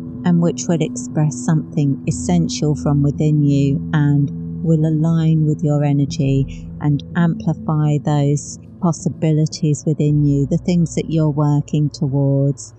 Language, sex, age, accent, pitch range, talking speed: English, female, 50-69, British, 140-180 Hz, 125 wpm